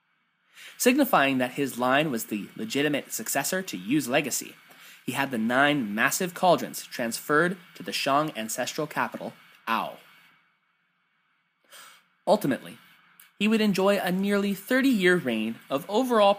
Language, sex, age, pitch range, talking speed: English, male, 20-39, 135-210 Hz, 125 wpm